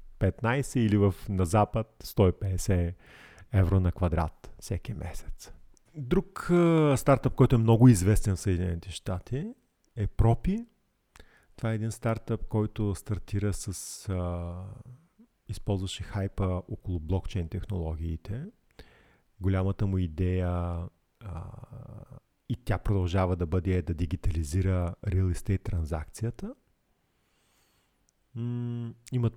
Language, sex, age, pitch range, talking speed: Bulgarian, male, 40-59, 90-115 Hz, 105 wpm